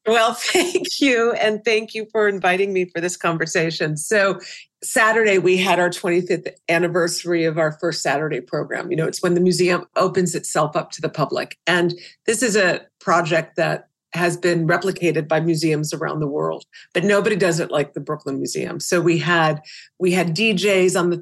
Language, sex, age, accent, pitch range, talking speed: Italian, female, 40-59, American, 165-195 Hz, 185 wpm